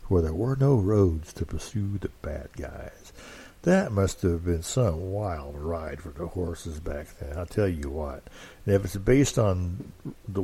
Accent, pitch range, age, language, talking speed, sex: American, 85-105 Hz, 60-79, English, 180 wpm, male